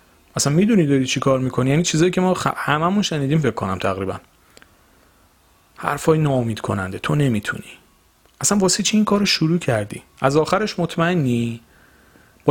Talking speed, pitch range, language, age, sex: 155 wpm, 110-155 Hz, Persian, 40-59, male